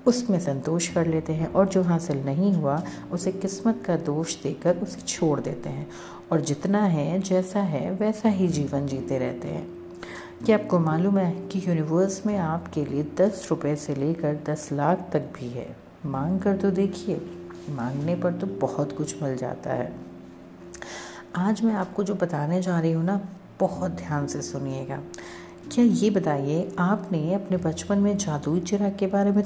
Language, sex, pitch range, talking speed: Hindi, female, 145-200 Hz, 175 wpm